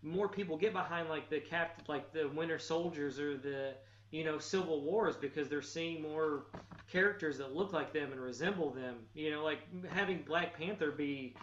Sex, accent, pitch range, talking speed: male, American, 140-185 Hz, 190 wpm